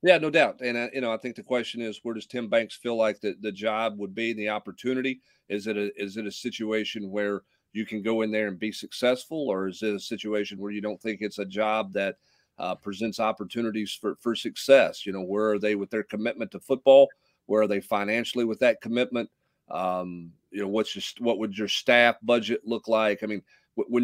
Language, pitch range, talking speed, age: English, 105-120 Hz, 230 wpm, 40-59